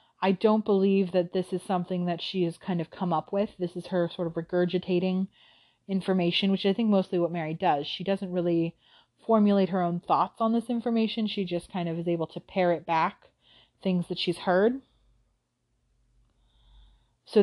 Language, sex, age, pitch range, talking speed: English, female, 30-49, 170-200 Hz, 185 wpm